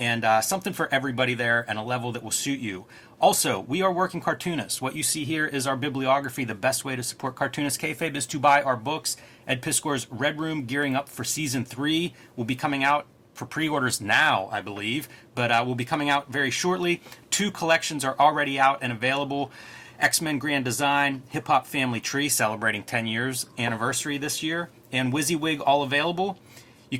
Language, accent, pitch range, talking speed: English, American, 125-155 Hz, 195 wpm